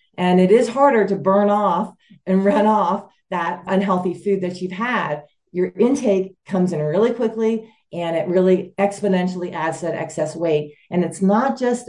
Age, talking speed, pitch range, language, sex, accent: 40-59, 170 wpm, 165-200 Hz, English, female, American